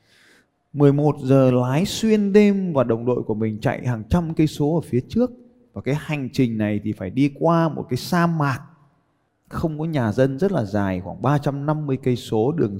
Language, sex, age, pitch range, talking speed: Vietnamese, male, 20-39, 110-155 Hz, 200 wpm